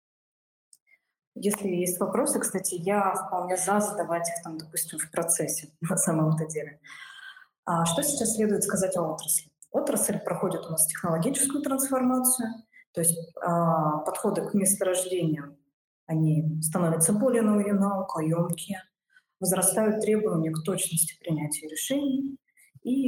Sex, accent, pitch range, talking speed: female, native, 170-240 Hz, 120 wpm